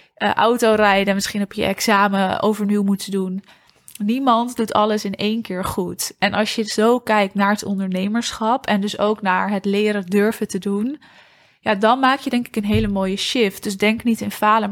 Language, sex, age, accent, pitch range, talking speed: Dutch, female, 20-39, Dutch, 200-225 Hz, 200 wpm